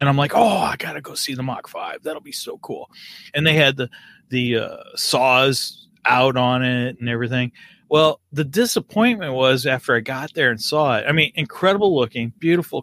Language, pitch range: English, 115-155 Hz